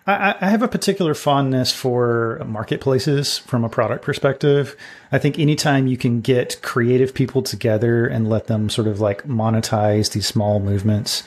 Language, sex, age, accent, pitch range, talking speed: English, male, 30-49, American, 110-140 Hz, 160 wpm